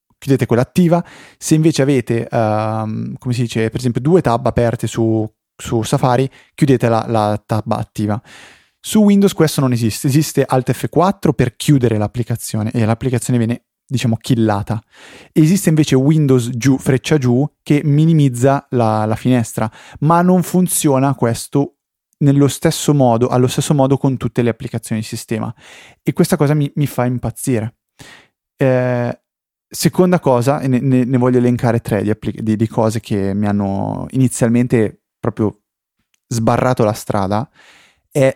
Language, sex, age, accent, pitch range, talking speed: Italian, male, 30-49, native, 115-140 Hz, 150 wpm